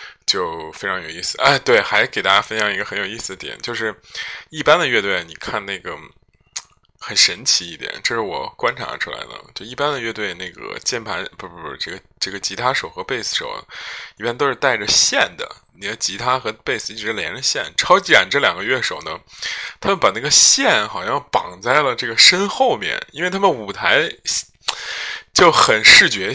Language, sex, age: Chinese, male, 20-39